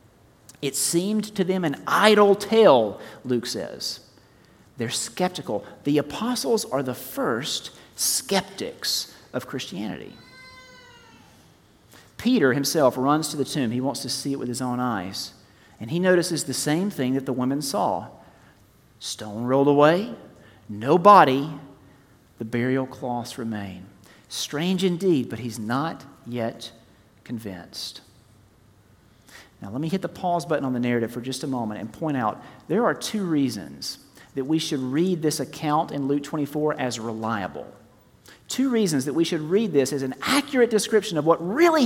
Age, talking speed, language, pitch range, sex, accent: 40-59, 150 wpm, English, 120-185 Hz, male, American